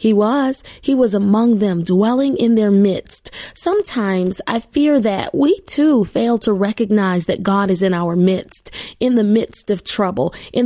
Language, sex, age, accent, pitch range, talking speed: English, female, 20-39, American, 205-260 Hz, 175 wpm